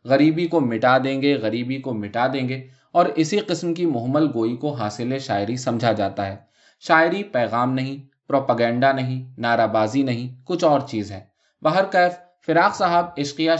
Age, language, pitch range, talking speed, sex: 20-39, Urdu, 120-165 Hz, 170 wpm, male